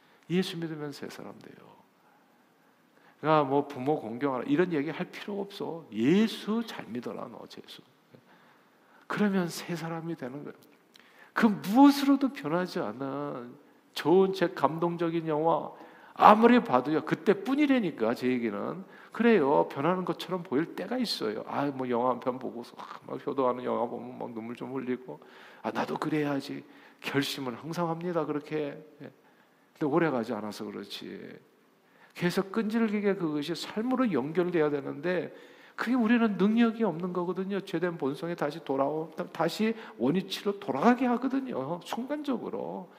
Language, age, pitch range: Korean, 50-69, 150-230 Hz